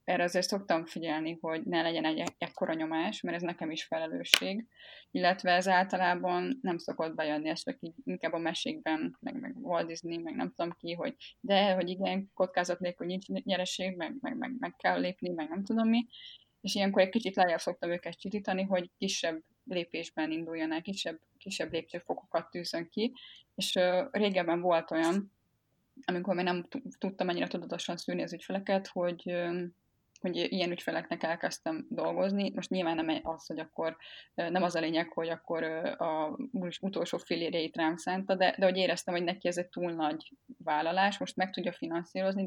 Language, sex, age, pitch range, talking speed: Hungarian, female, 20-39, 165-195 Hz, 170 wpm